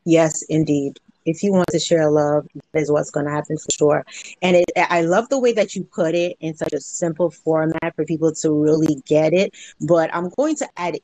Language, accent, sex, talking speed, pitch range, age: English, American, female, 225 wpm, 155-210 Hz, 30-49